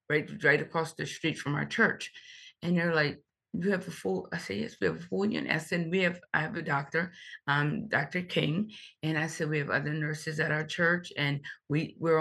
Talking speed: 230 wpm